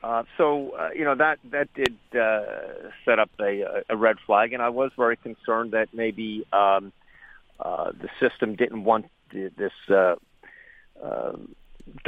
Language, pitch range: English, 100-120 Hz